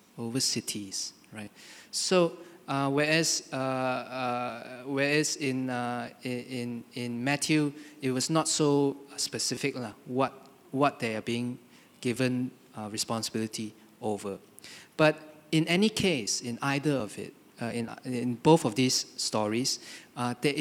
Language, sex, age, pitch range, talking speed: English, male, 20-39, 115-140 Hz, 135 wpm